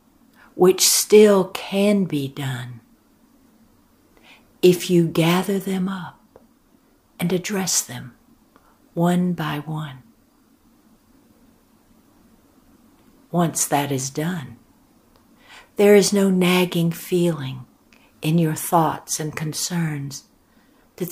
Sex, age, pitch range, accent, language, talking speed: female, 60-79, 160-235 Hz, American, English, 90 wpm